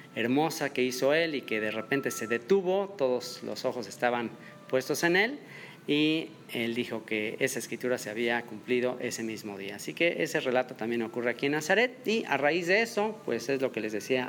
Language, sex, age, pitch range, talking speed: English, male, 40-59, 115-145 Hz, 205 wpm